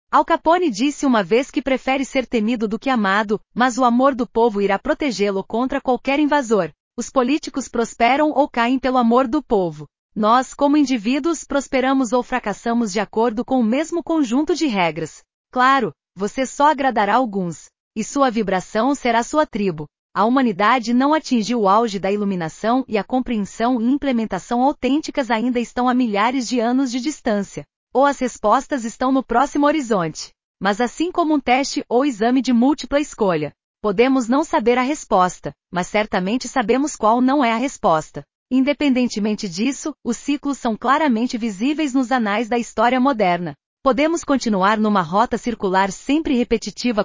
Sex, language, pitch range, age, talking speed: female, Portuguese, 210-270 Hz, 30-49, 160 wpm